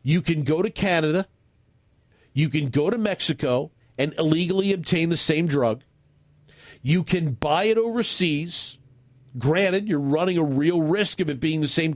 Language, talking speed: English, 160 wpm